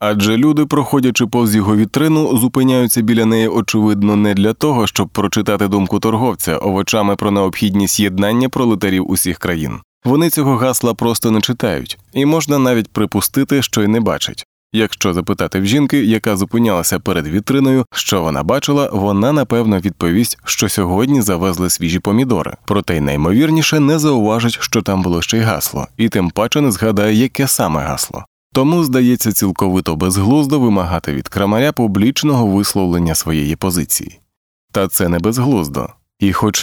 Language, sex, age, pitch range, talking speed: Ukrainian, male, 20-39, 95-125 Hz, 150 wpm